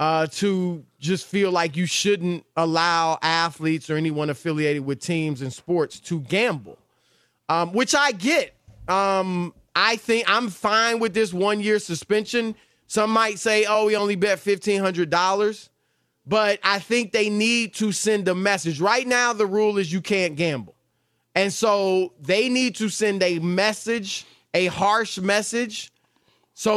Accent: American